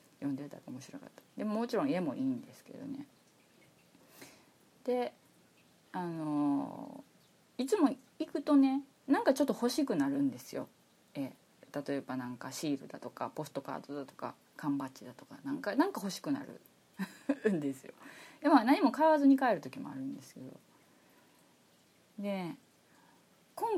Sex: female